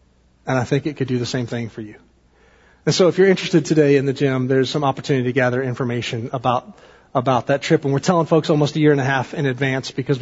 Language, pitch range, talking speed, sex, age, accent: English, 130-185 Hz, 255 wpm, male, 30-49, American